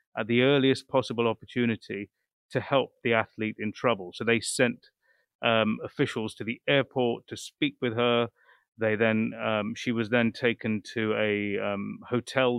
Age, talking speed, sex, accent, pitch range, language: 30-49, 160 wpm, male, British, 110-130 Hz, English